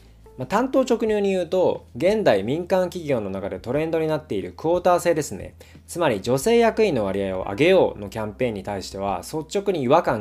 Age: 20-39